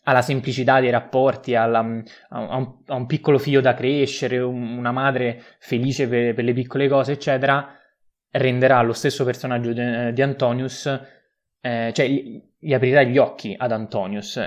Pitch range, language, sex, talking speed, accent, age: 110-130 Hz, Italian, male, 145 wpm, native, 20-39